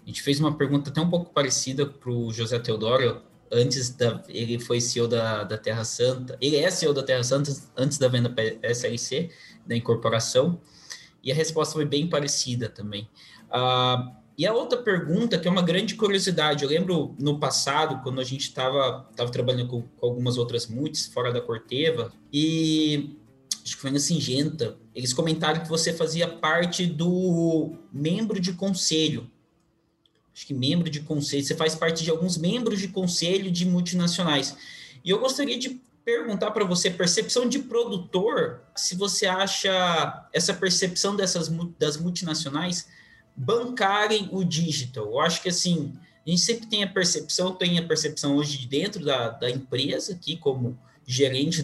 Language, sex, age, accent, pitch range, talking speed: Portuguese, male, 20-39, Brazilian, 130-180 Hz, 165 wpm